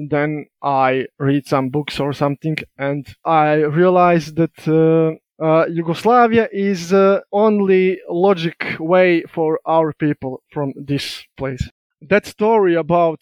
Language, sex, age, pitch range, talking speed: English, male, 20-39, 150-180 Hz, 125 wpm